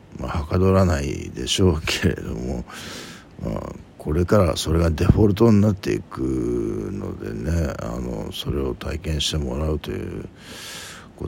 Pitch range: 75-95 Hz